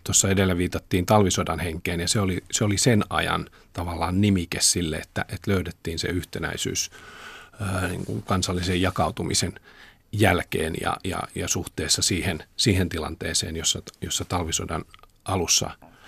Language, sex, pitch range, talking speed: Finnish, male, 85-100 Hz, 120 wpm